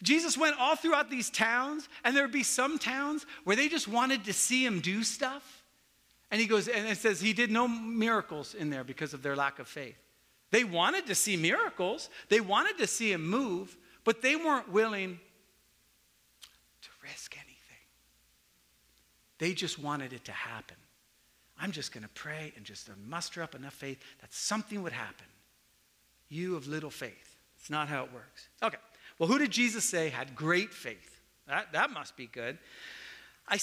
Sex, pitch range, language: male, 140-230 Hz, English